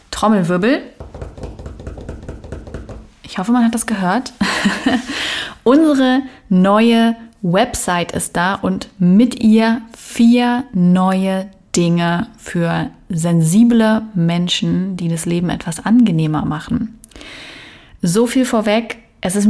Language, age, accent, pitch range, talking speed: German, 30-49, German, 180-220 Hz, 100 wpm